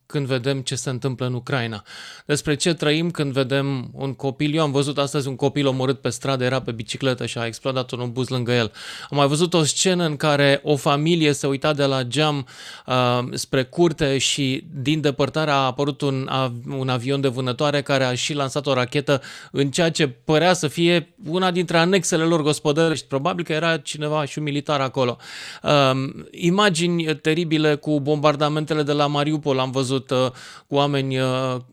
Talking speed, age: 185 wpm, 30-49